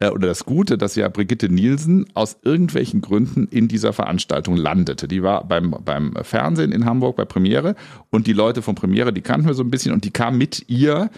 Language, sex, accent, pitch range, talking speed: German, male, German, 105-140 Hz, 210 wpm